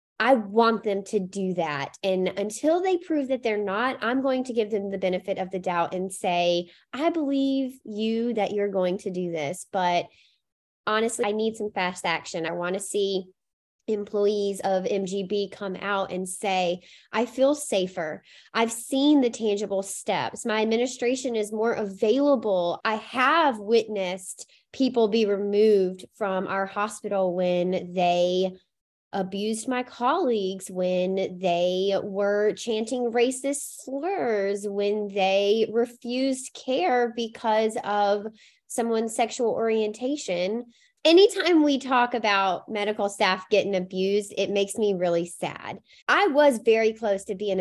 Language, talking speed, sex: English, 140 wpm, female